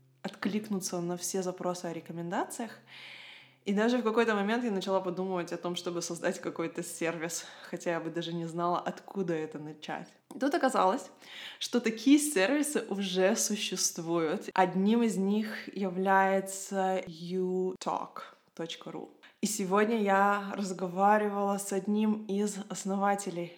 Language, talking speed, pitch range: Russian, 125 wpm, 175-205 Hz